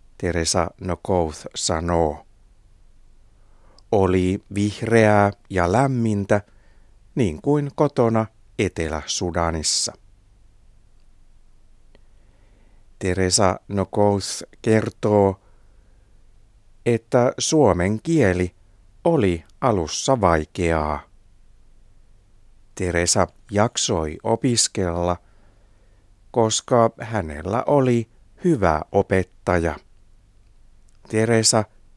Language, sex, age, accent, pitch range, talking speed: Finnish, male, 60-79, native, 95-110 Hz, 55 wpm